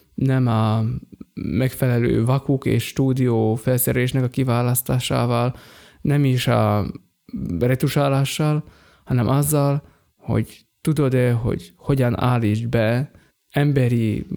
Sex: male